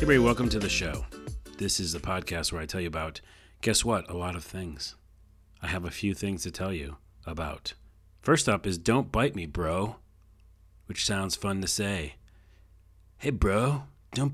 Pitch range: 90-110 Hz